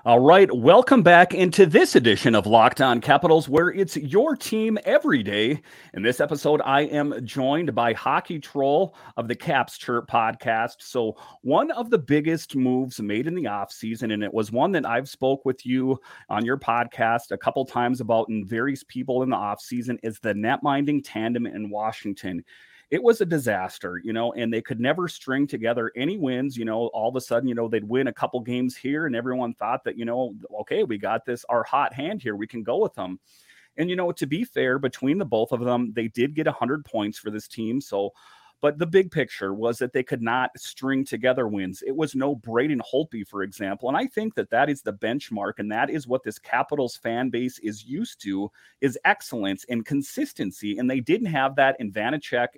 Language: English